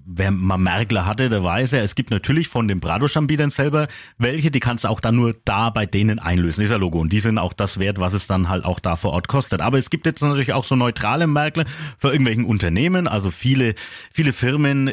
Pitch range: 105-145 Hz